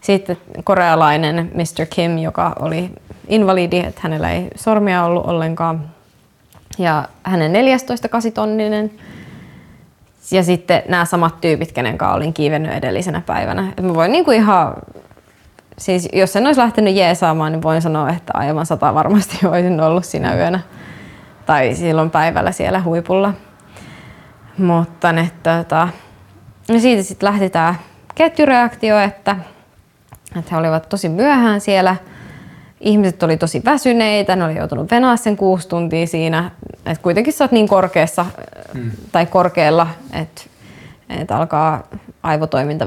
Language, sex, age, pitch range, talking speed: Finnish, female, 20-39, 160-195 Hz, 125 wpm